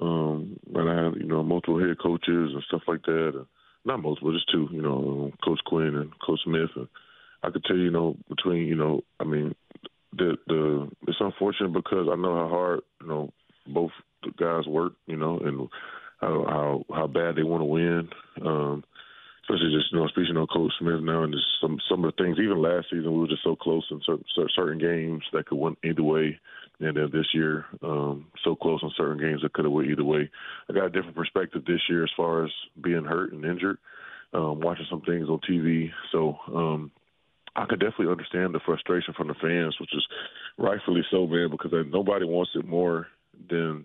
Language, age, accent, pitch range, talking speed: English, 20-39, American, 75-85 Hz, 215 wpm